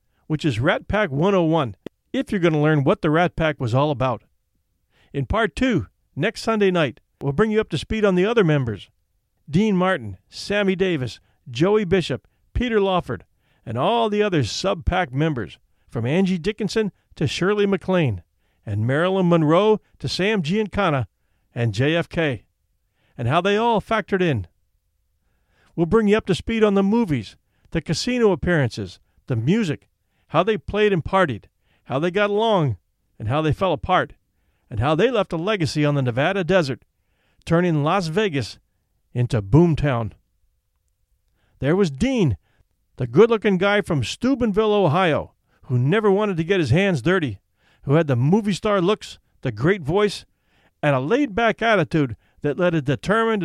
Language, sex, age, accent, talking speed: English, male, 50-69, American, 160 wpm